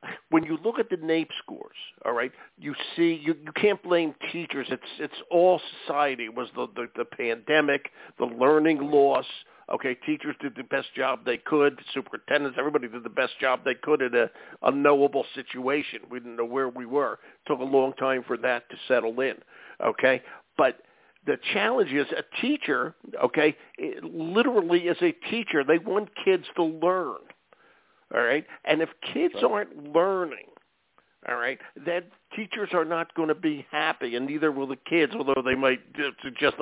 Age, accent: 50-69, American